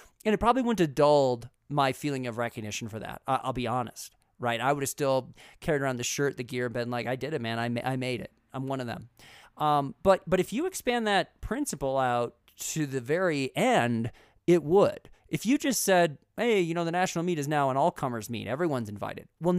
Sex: male